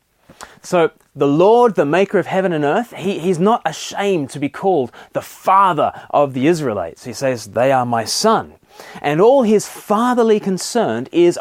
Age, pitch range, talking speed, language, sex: 30-49, 145-205 Hz, 175 wpm, English, male